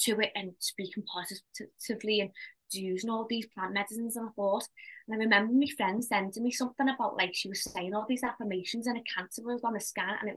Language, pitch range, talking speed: English, 185-215 Hz, 225 wpm